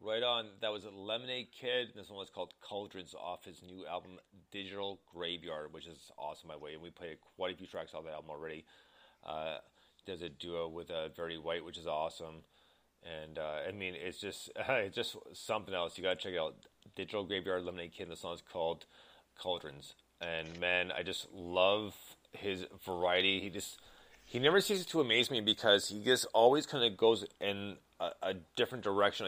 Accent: American